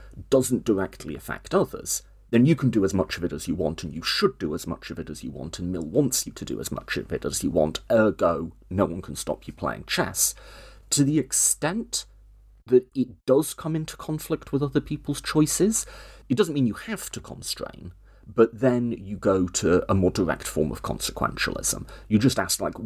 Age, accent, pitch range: 30-49, British, 90-130 Hz